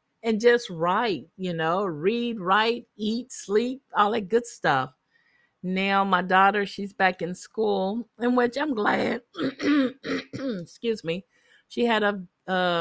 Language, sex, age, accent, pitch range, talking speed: English, female, 50-69, American, 180-235 Hz, 140 wpm